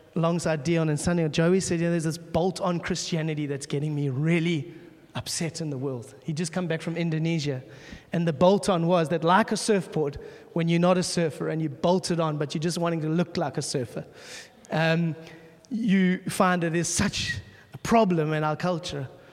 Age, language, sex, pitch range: 20-39, English, male, 155-180 Hz